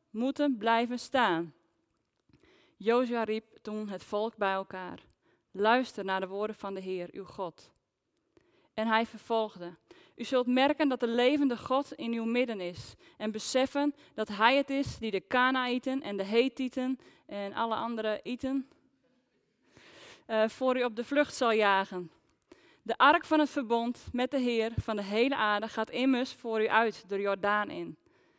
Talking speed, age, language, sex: 165 wpm, 20-39, Dutch, female